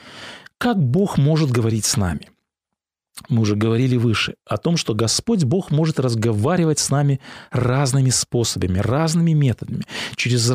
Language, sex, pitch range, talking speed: Russian, male, 120-170 Hz, 135 wpm